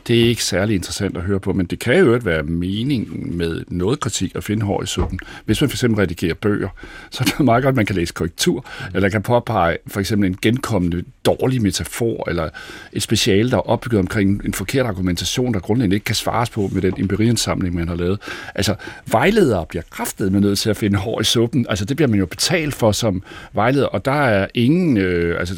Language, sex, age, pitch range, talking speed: Danish, male, 60-79, 95-140 Hz, 225 wpm